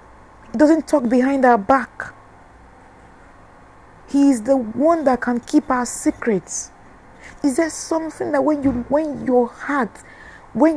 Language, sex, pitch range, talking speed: English, female, 225-295 Hz, 130 wpm